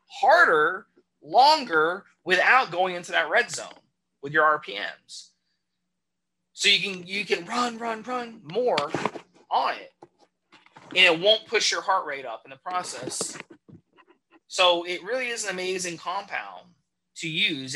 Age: 30-49